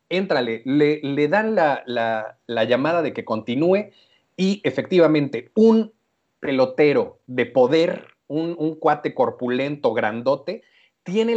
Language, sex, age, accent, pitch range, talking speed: Spanish, male, 40-59, Mexican, 125-165 Hz, 120 wpm